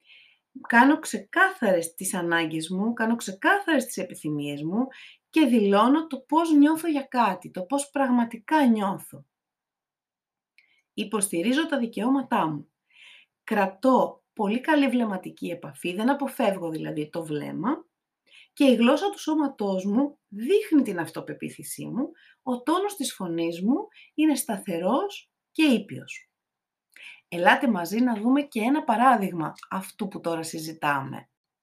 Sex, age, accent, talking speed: female, 30-49, native, 125 wpm